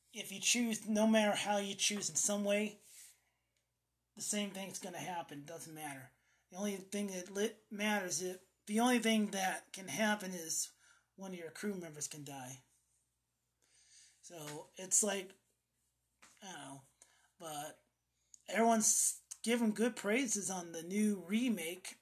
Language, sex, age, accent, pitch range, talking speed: English, male, 30-49, American, 150-200 Hz, 145 wpm